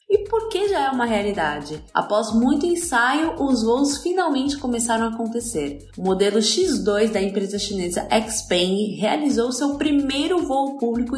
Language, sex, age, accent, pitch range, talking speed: Portuguese, female, 20-39, Brazilian, 215-285 Hz, 150 wpm